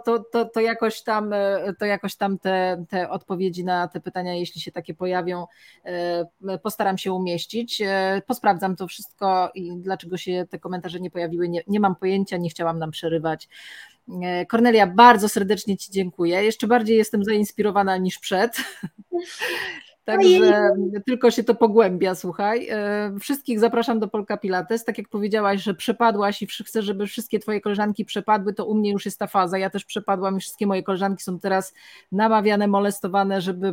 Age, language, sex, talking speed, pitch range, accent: 20-39, Polish, female, 165 wpm, 185-225 Hz, native